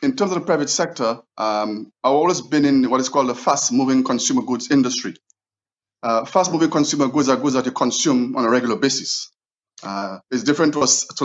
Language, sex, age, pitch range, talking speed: English, male, 30-49, 115-135 Hz, 205 wpm